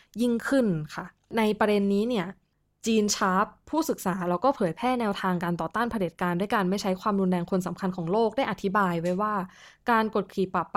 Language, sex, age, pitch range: Thai, female, 20-39, 180-225 Hz